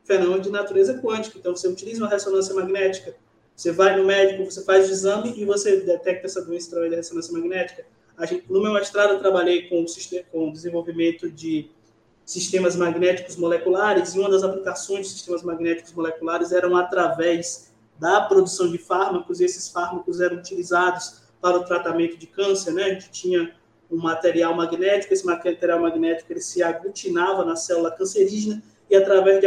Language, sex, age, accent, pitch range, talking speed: Portuguese, male, 20-39, Brazilian, 170-195 Hz, 175 wpm